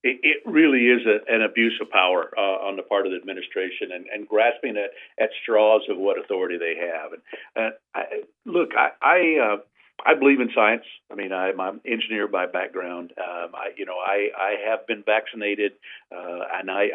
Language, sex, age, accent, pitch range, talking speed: English, male, 50-69, American, 100-135 Hz, 200 wpm